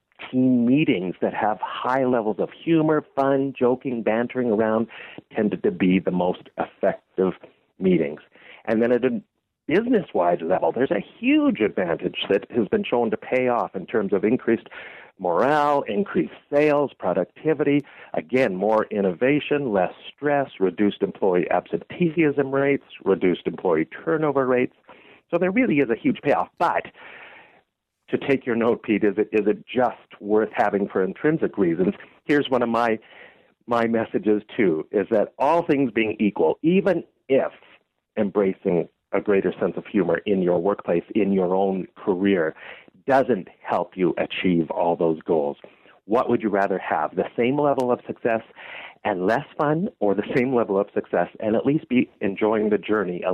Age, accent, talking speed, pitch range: 50-69, American, 160 wpm, 105-150 Hz